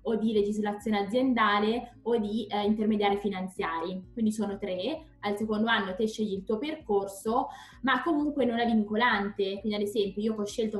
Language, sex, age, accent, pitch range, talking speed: Italian, female, 20-39, native, 195-225 Hz, 170 wpm